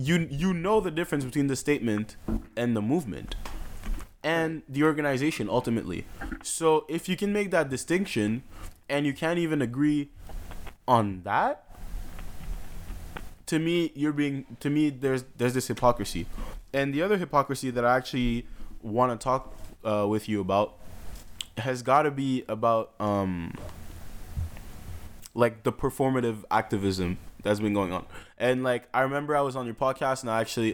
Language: English